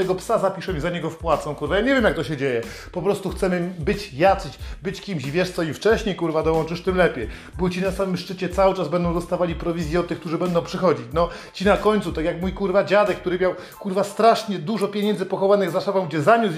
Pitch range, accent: 165-200 Hz, native